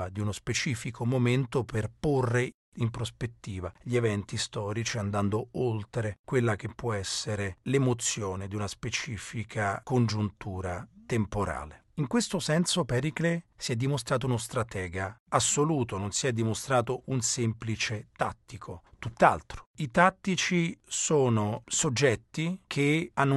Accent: native